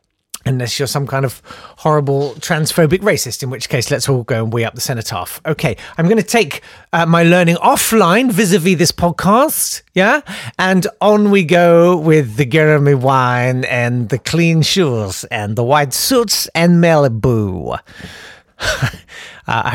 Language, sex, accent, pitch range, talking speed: English, male, British, 110-170 Hz, 160 wpm